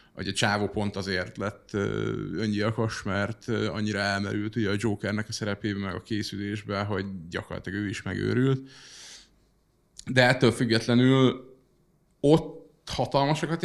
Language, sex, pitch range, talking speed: Hungarian, male, 100-130 Hz, 125 wpm